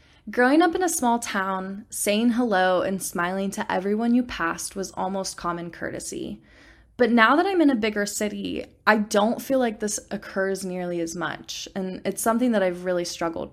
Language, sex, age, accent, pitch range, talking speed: English, female, 20-39, American, 185-235 Hz, 185 wpm